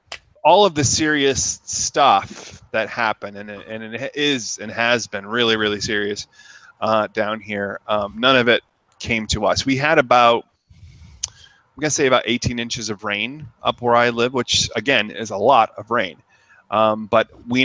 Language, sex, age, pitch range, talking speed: English, male, 30-49, 105-125 Hz, 175 wpm